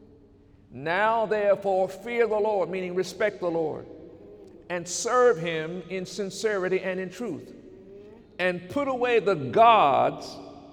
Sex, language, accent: male, English, American